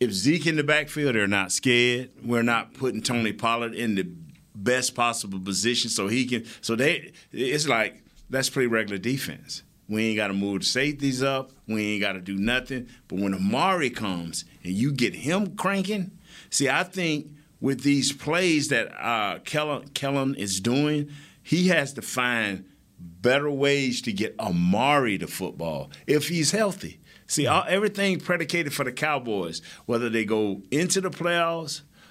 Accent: American